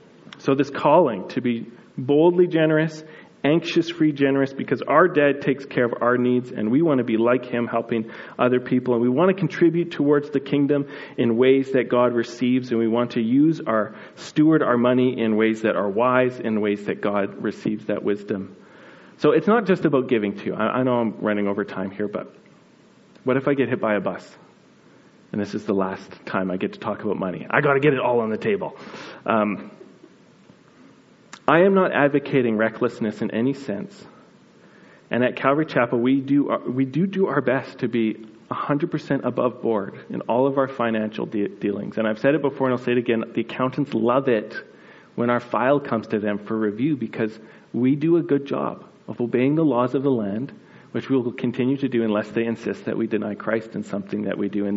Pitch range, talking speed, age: 115-145 Hz, 215 wpm, 40-59